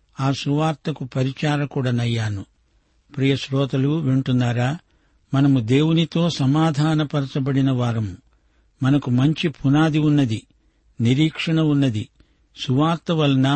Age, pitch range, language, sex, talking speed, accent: 60-79, 135-155 Hz, Telugu, male, 80 wpm, native